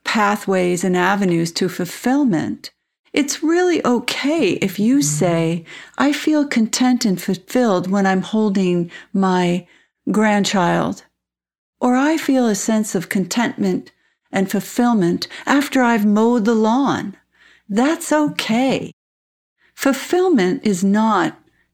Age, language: 60-79, English